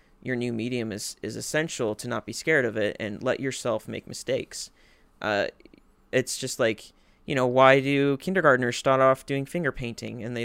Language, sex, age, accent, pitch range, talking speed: English, male, 30-49, American, 120-135 Hz, 190 wpm